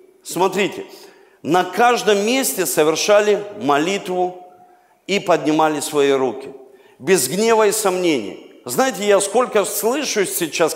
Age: 50-69